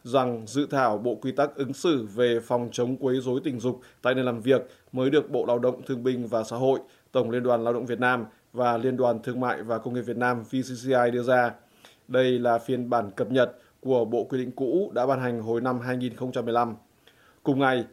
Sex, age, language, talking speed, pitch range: male, 20-39, Vietnamese, 230 wpm, 120-130 Hz